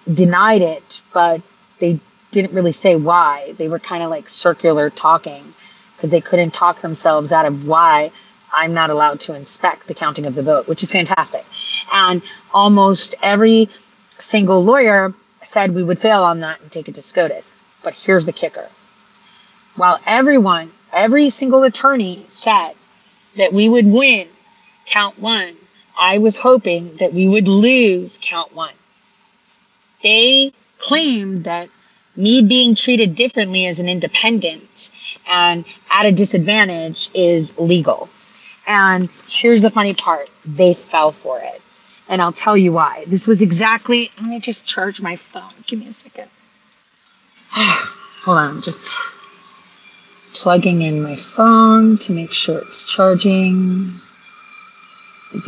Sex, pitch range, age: female, 175-225 Hz, 30-49